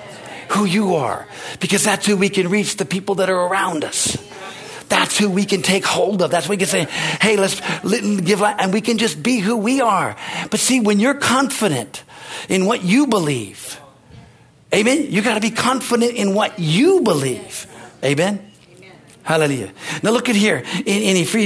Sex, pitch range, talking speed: male, 170-220 Hz, 180 wpm